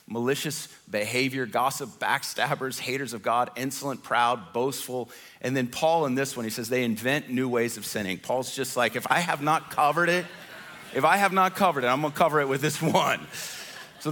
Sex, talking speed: male, 200 wpm